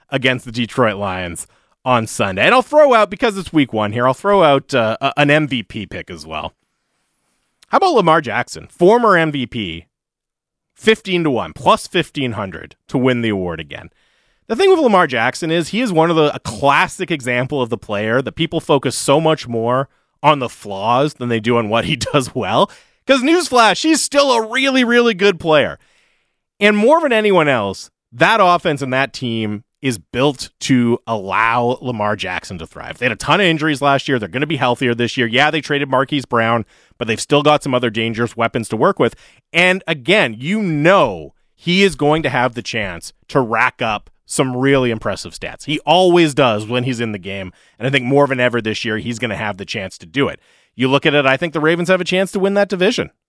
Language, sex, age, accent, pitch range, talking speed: English, male, 30-49, American, 120-165 Hz, 215 wpm